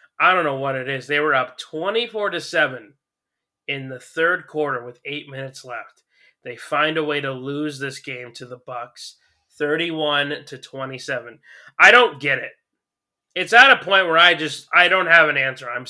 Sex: male